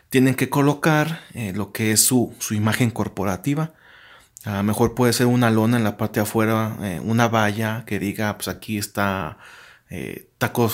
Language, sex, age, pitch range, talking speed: Spanish, male, 30-49, 105-125 Hz, 185 wpm